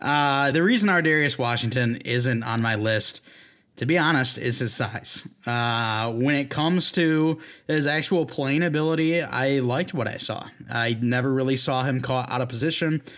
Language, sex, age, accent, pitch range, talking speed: English, male, 20-39, American, 115-140 Hz, 180 wpm